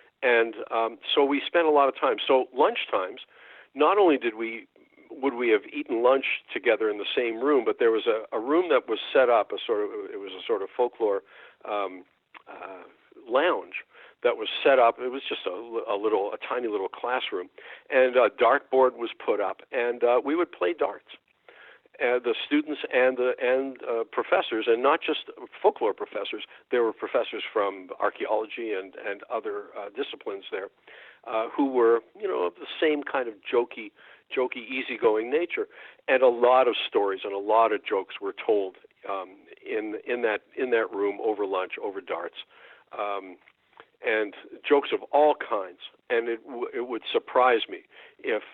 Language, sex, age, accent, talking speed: English, male, 60-79, American, 185 wpm